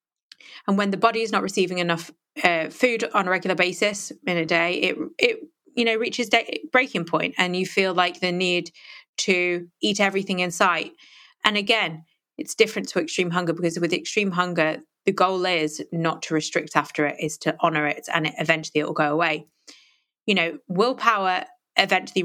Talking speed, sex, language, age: 190 wpm, female, English, 20-39